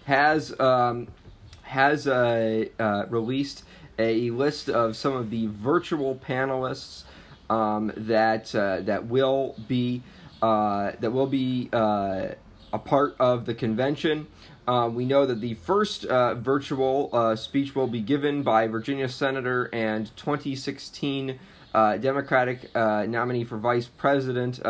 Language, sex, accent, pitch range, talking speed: English, male, American, 115-135 Hz, 135 wpm